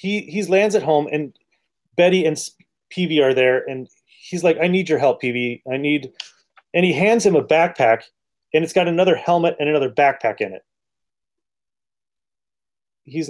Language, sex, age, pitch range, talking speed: English, male, 30-49, 140-180 Hz, 170 wpm